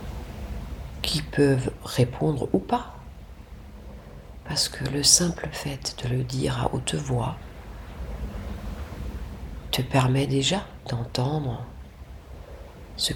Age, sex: 40-59, female